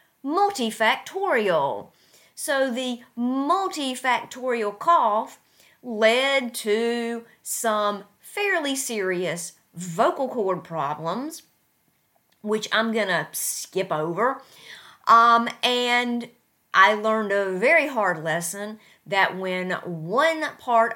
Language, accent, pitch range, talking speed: English, American, 195-270 Hz, 90 wpm